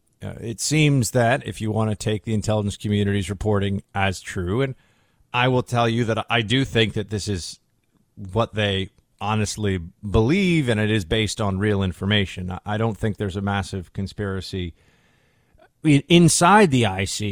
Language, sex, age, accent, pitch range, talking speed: English, male, 40-59, American, 95-115 Hz, 165 wpm